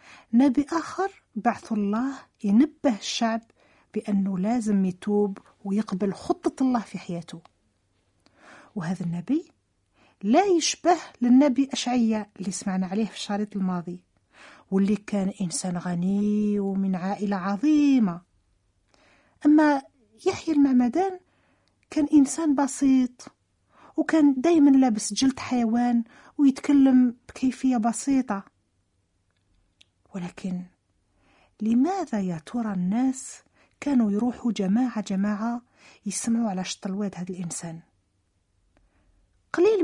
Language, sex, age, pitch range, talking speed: Italian, female, 40-59, 195-260 Hz, 95 wpm